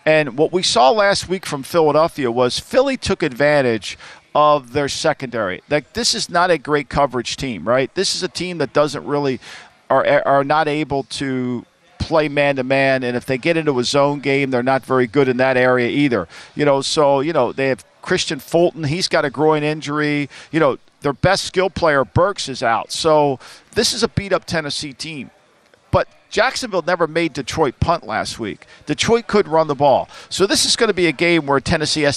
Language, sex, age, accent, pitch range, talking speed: English, male, 50-69, American, 135-165 Hz, 205 wpm